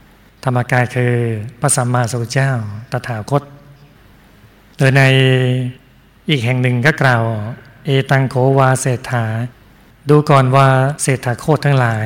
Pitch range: 125-145 Hz